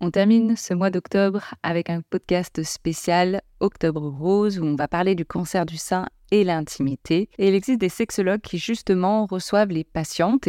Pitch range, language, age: 155-195 Hz, French, 30-49